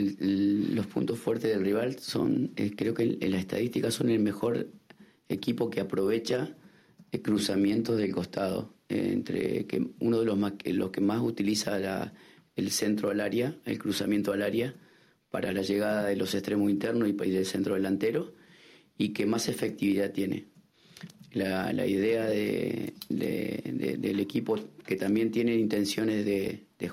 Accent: Argentinian